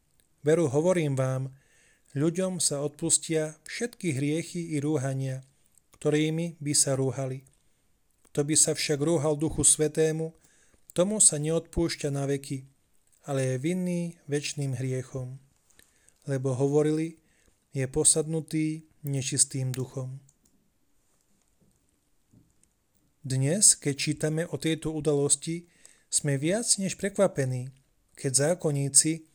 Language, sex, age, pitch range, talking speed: Slovak, male, 30-49, 140-165 Hz, 100 wpm